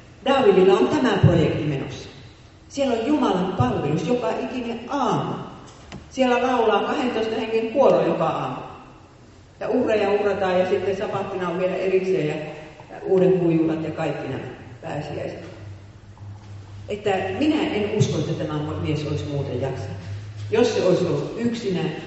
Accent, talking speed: native, 135 wpm